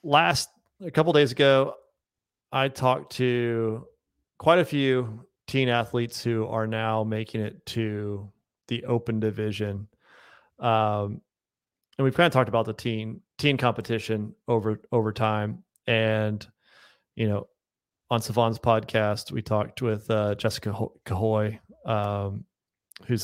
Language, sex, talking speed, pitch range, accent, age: English, male, 130 wpm, 110-125 Hz, American, 30-49